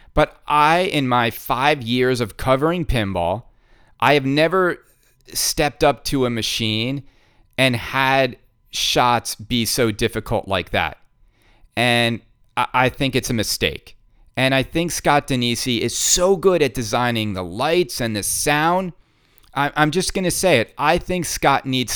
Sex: male